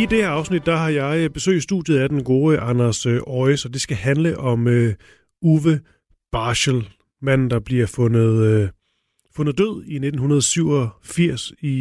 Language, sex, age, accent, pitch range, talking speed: Danish, male, 30-49, native, 120-150 Hz, 170 wpm